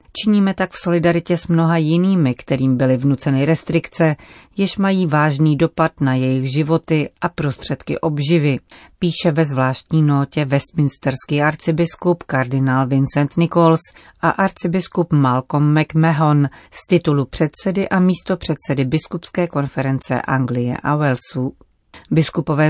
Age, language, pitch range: 40-59, Czech, 140-175 Hz